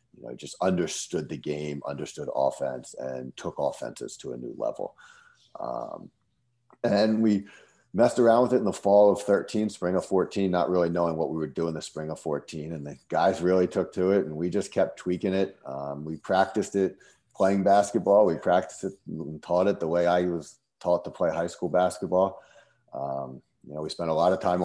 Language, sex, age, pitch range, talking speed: English, male, 40-59, 75-90 Hz, 200 wpm